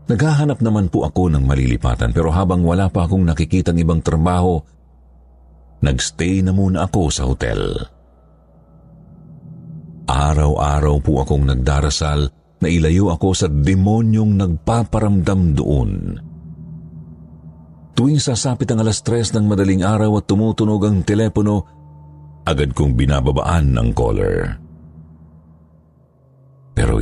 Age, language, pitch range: 50-69, Filipino, 75-100 Hz